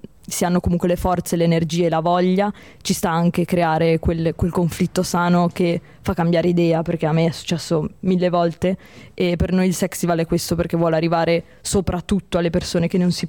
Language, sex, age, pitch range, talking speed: Italian, female, 20-39, 165-185 Hz, 205 wpm